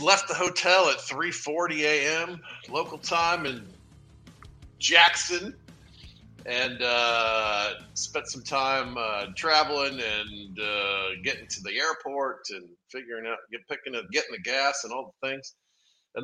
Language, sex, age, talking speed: English, male, 50-69, 140 wpm